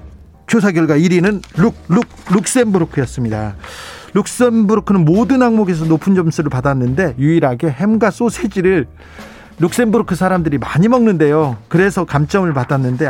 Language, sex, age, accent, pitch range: Korean, male, 40-59, native, 145-200 Hz